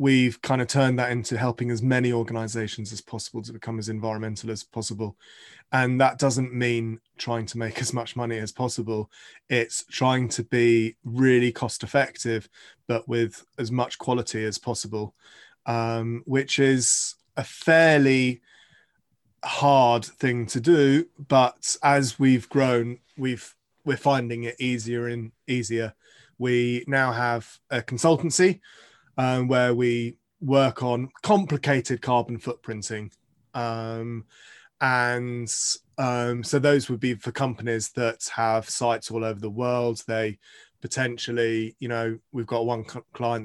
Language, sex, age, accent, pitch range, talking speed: English, male, 20-39, British, 115-125 Hz, 140 wpm